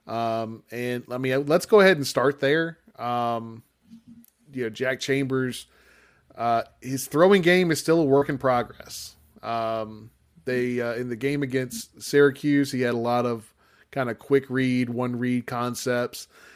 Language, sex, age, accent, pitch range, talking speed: English, male, 20-39, American, 115-135 Hz, 165 wpm